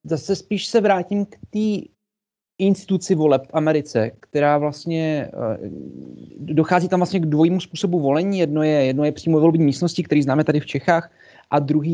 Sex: male